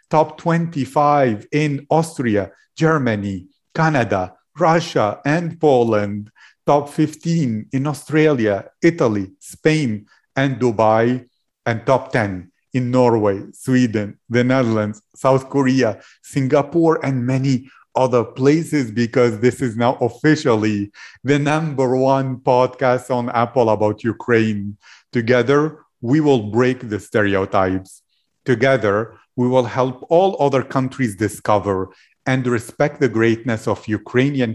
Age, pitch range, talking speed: 50-69, 110-135 Hz, 115 wpm